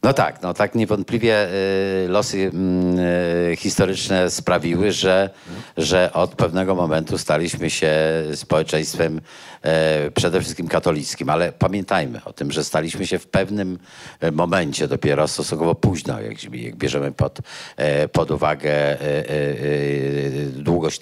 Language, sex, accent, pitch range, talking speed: Polish, male, native, 80-115 Hz, 110 wpm